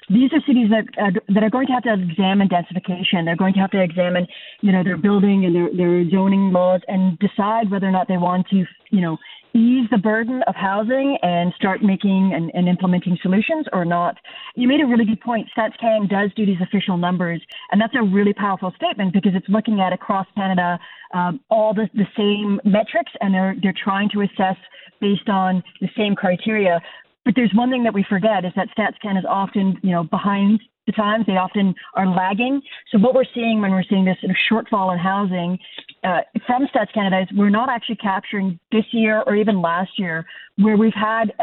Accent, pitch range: American, 185-220 Hz